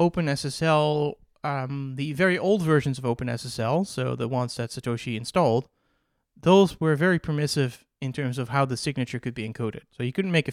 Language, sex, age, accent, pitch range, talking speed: English, male, 30-49, American, 120-150 Hz, 175 wpm